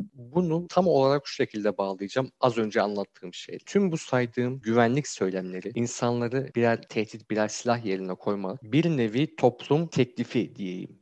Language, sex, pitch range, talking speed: Turkish, male, 105-125 Hz, 145 wpm